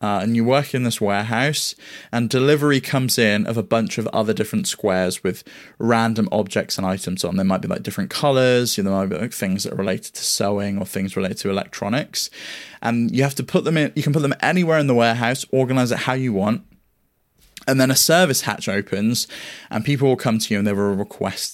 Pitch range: 100-120 Hz